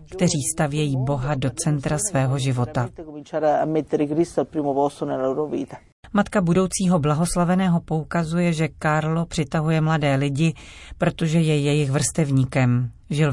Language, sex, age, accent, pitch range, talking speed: Czech, female, 40-59, native, 135-170 Hz, 95 wpm